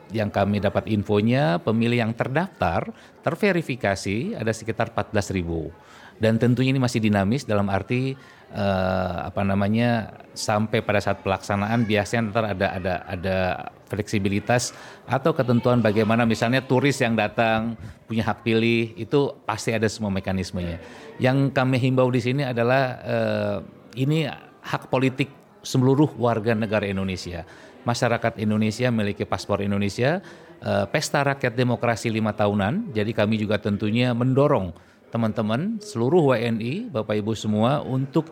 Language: Indonesian